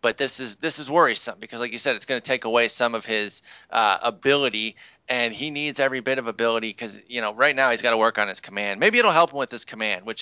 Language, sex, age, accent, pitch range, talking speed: English, male, 30-49, American, 110-130 Hz, 275 wpm